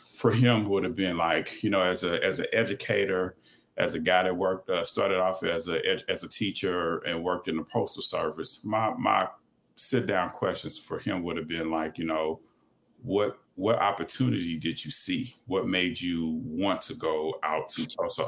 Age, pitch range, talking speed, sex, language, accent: 30-49, 80-90 Hz, 200 wpm, male, English, American